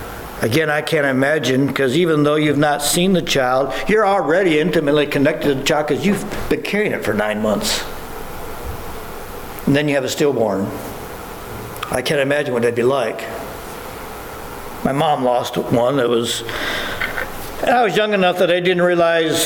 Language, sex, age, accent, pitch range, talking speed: English, male, 60-79, American, 125-170 Hz, 165 wpm